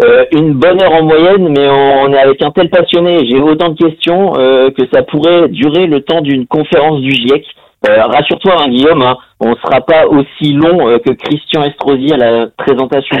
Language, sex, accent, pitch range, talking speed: French, male, French, 125-170 Hz, 215 wpm